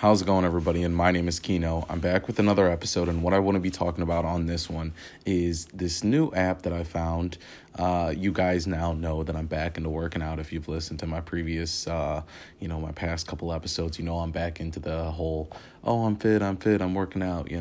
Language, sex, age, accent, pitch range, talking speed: English, male, 30-49, American, 80-95 Hz, 245 wpm